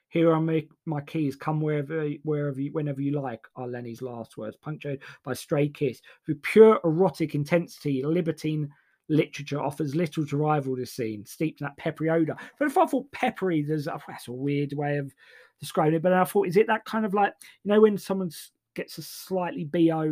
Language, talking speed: English, 205 wpm